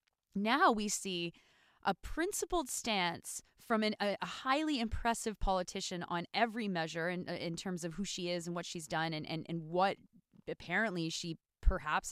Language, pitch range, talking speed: English, 185-235 Hz, 175 wpm